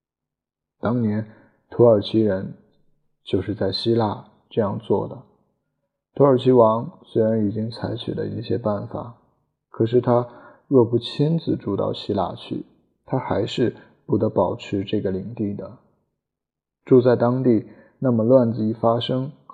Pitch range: 105-125 Hz